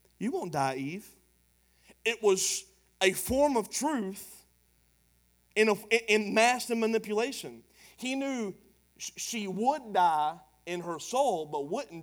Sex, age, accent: male, 30-49, American